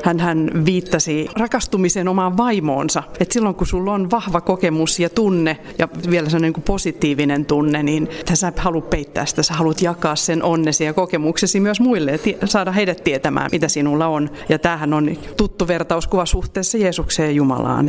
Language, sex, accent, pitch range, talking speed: Finnish, female, native, 155-185 Hz, 175 wpm